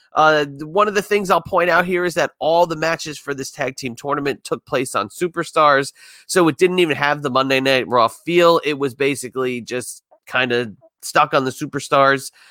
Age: 30-49